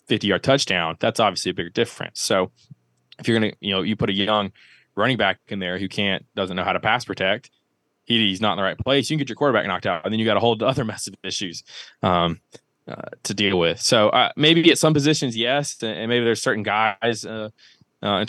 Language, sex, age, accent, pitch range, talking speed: English, male, 20-39, American, 100-115 Hz, 235 wpm